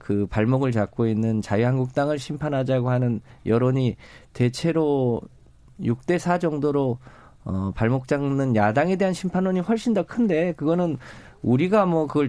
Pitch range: 105-145 Hz